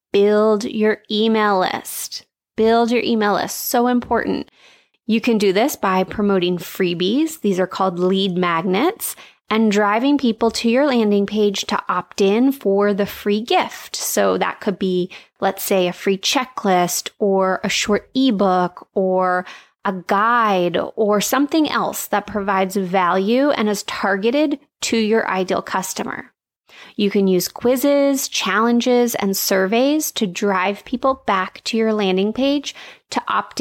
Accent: American